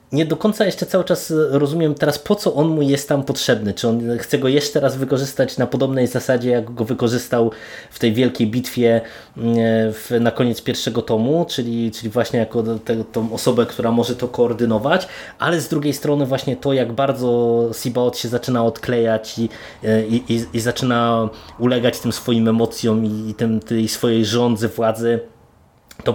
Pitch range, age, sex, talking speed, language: 115-145 Hz, 20-39, male, 175 wpm, Polish